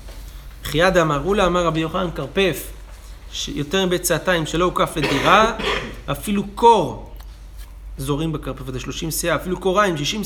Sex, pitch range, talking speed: male, 115-195 Hz, 135 wpm